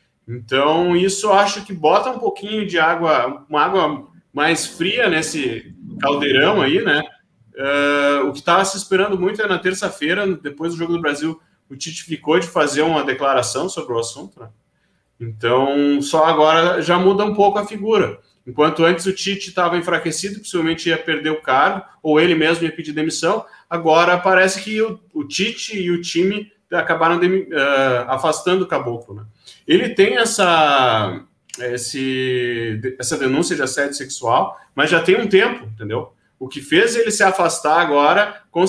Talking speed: 165 wpm